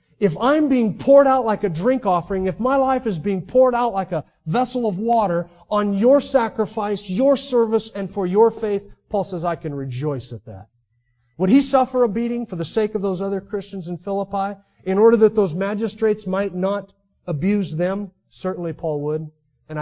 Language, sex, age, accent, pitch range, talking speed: English, male, 40-59, American, 150-215 Hz, 195 wpm